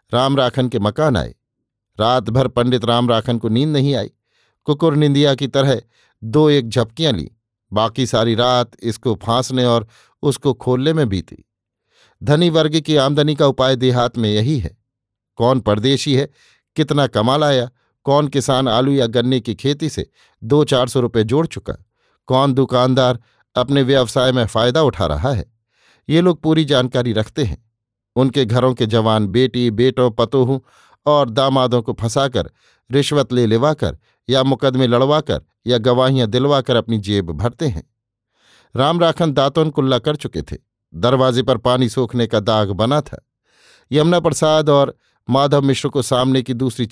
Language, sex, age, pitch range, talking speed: Hindi, male, 50-69, 115-140 Hz, 160 wpm